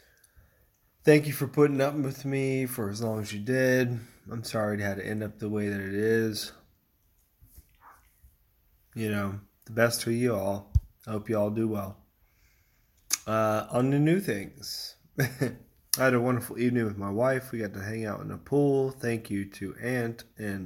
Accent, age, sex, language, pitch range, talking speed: American, 20-39, male, English, 105-125 Hz, 185 wpm